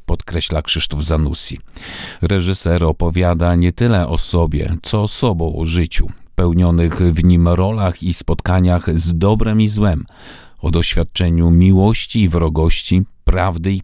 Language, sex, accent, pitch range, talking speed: Polish, male, native, 85-100 Hz, 135 wpm